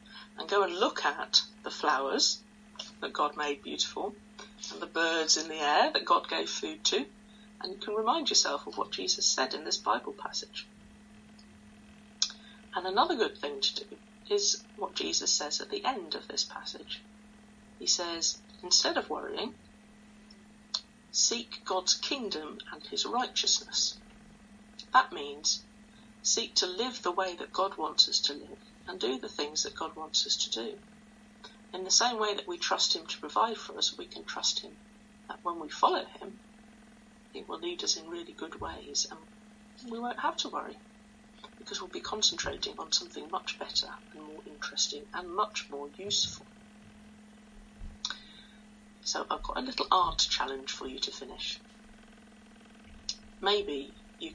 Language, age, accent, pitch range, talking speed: English, 40-59, British, 200-220 Hz, 165 wpm